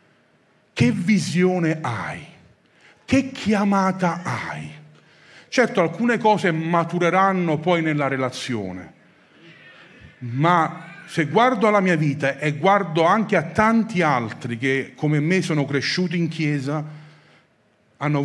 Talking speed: 110 wpm